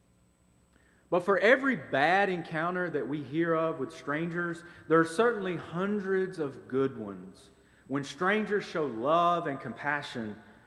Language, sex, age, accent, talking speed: English, male, 40-59, American, 135 wpm